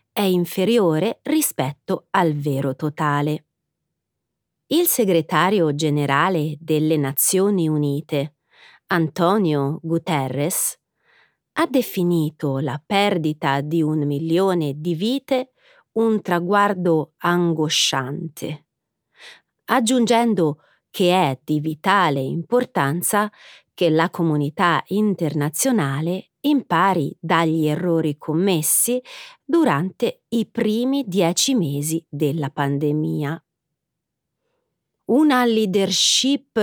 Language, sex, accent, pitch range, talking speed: Italian, female, native, 155-220 Hz, 80 wpm